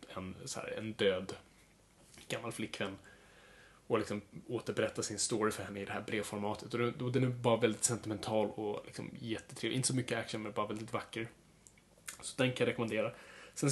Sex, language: male, Swedish